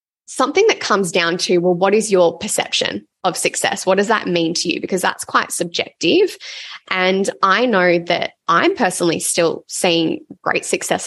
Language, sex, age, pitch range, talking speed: English, female, 20-39, 175-215 Hz, 175 wpm